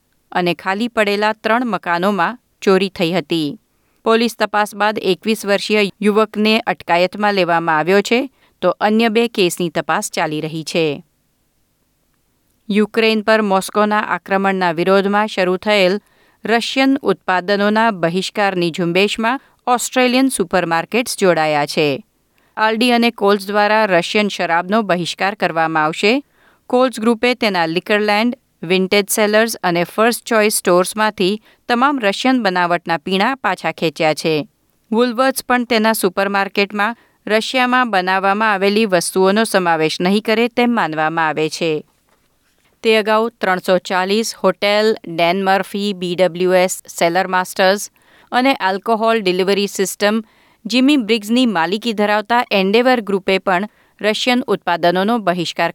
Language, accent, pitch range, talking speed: Gujarati, native, 180-220 Hz, 110 wpm